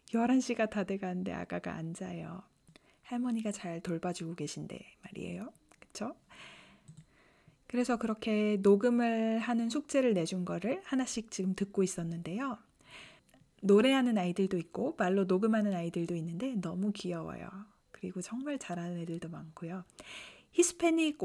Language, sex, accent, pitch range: Korean, female, native, 175-245 Hz